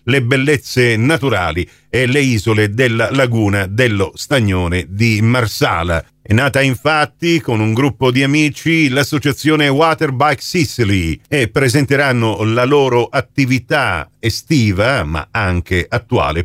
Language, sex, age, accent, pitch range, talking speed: Italian, male, 50-69, native, 115-155 Hz, 115 wpm